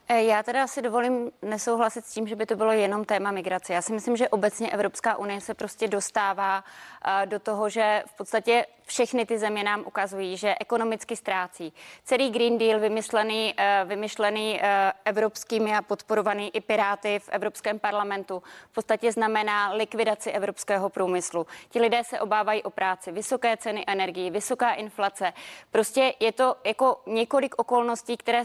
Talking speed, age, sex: 155 wpm, 20-39, female